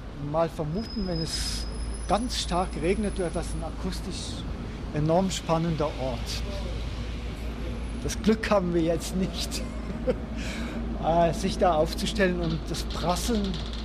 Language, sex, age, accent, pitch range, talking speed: German, male, 50-69, German, 135-180 Hz, 115 wpm